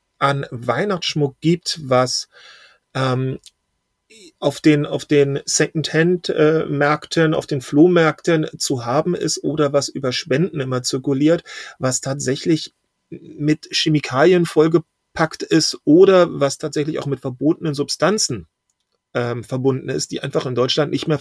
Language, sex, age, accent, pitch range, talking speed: German, male, 40-59, German, 130-165 Hz, 120 wpm